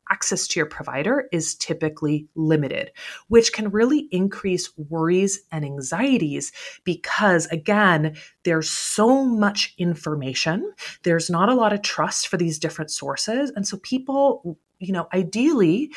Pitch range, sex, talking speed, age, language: 155-210 Hz, female, 135 wpm, 30-49, English